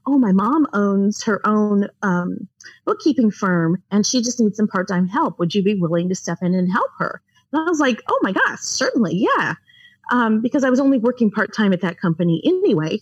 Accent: American